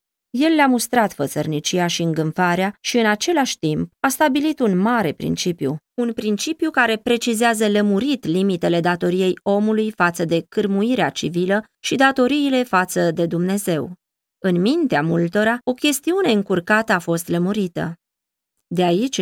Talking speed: 135 wpm